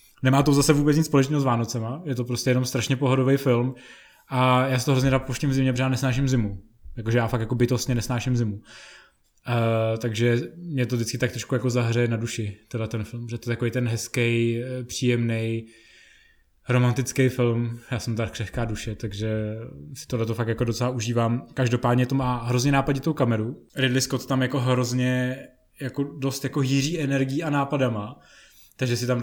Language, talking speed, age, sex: Czech, 185 wpm, 20-39, male